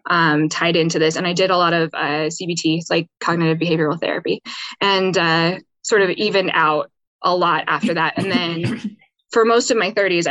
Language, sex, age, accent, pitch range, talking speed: English, female, 20-39, American, 180-230 Hz, 190 wpm